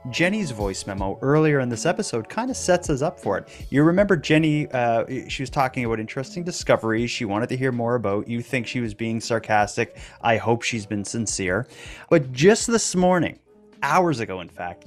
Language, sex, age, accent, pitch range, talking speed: English, male, 30-49, American, 110-155 Hz, 200 wpm